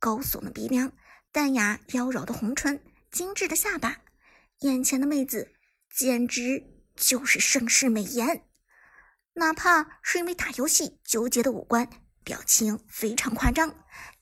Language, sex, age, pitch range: Chinese, male, 50-69, 230-300 Hz